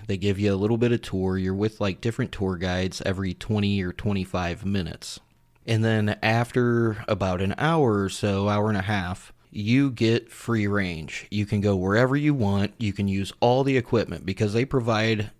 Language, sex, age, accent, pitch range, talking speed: English, male, 30-49, American, 95-110 Hz, 195 wpm